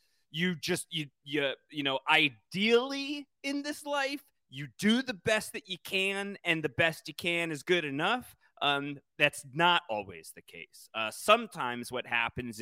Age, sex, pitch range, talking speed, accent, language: 30-49, male, 120-165 Hz, 165 wpm, American, English